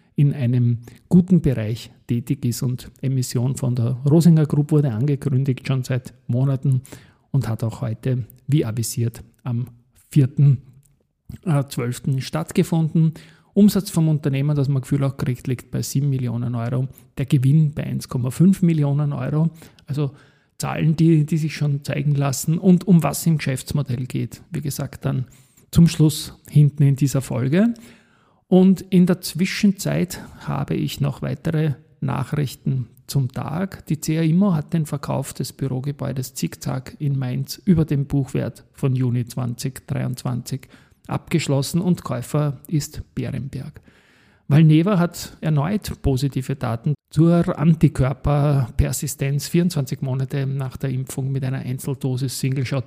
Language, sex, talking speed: German, male, 135 wpm